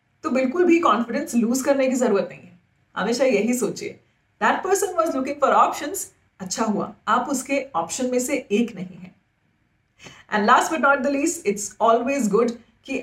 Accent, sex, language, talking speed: native, female, Hindi, 125 wpm